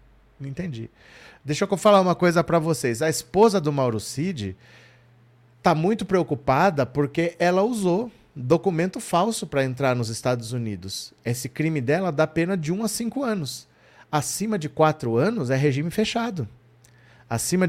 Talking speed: 155 wpm